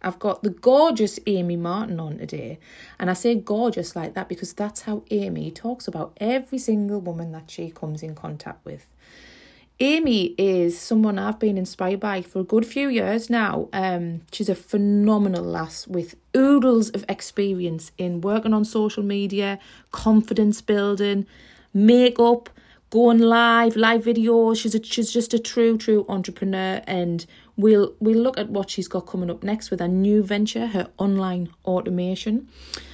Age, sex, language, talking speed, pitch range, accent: 30-49, female, English, 160 wpm, 175-220 Hz, British